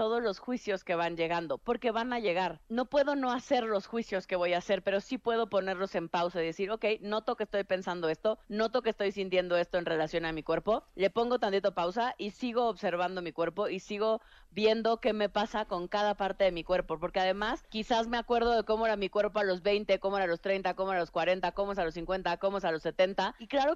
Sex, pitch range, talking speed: female, 170-215 Hz, 255 wpm